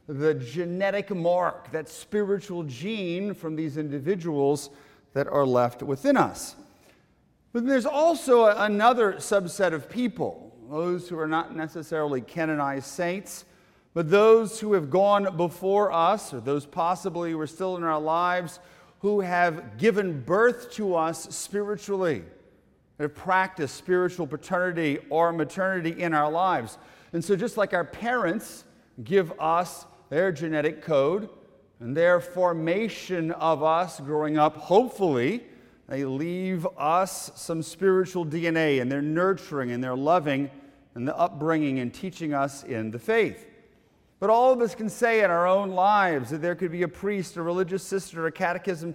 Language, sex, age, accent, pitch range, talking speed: English, male, 40-59, American, 155-195 Hz, 150 wpm